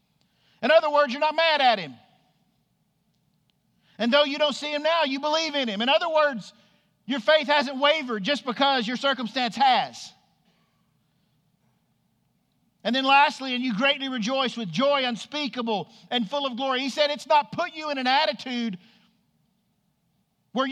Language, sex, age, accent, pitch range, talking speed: English, male, 50-69, American, 200-275 Hz, 160 wpm